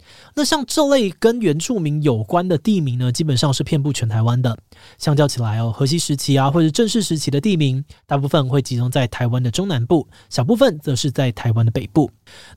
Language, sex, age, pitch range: Chinese, male, 20-39, 125-170 Hz